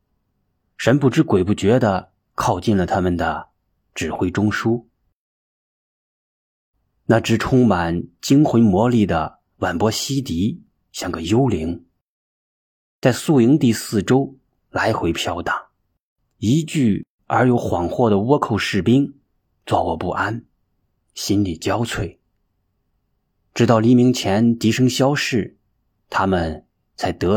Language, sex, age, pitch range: Chinese, male, 30-49, 90-120 Hz